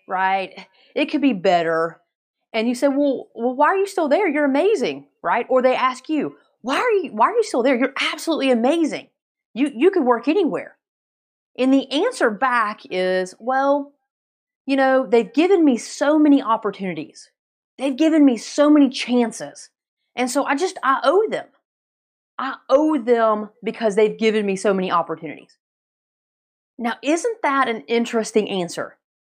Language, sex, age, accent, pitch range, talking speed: English, female, 30-49, American, 215-285 Hz, 165 wpm